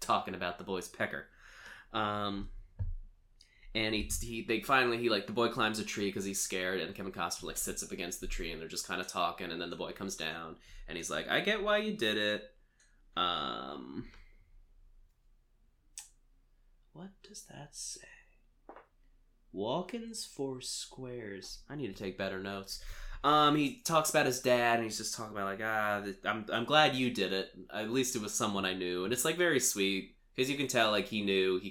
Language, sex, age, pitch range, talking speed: English, male, 20-39, 95-125 Hz, 195 wpm